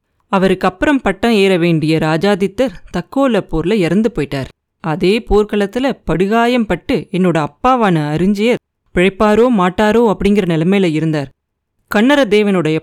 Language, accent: Tamil, native